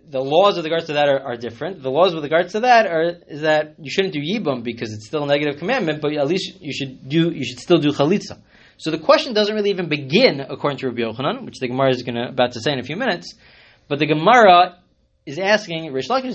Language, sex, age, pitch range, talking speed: English, male, 20-39, 130-180 Hz, 255 wpm